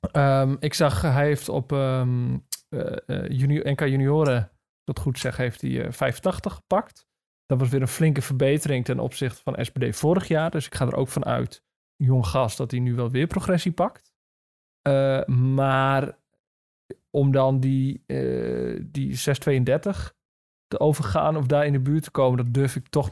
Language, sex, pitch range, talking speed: Dutch, male, 125-150 Hz, 180 wpm